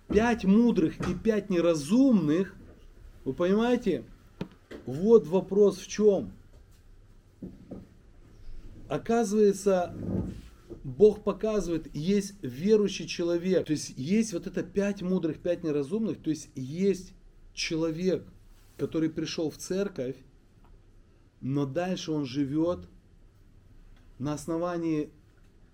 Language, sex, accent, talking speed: Russian, male, native, 95 wpm